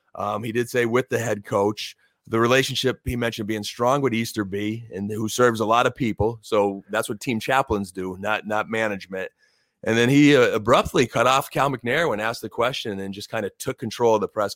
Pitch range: 105-125 Hz